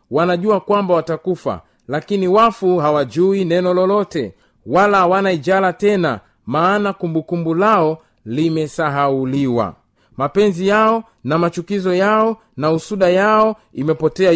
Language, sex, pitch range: Swahili, male, 145-195 Hz